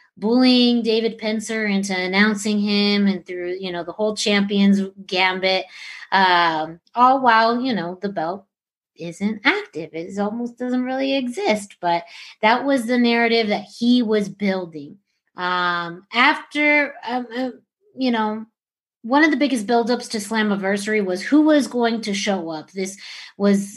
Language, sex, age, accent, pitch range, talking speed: English, female, 30-49, American, 185-240 Hz, 150 wpm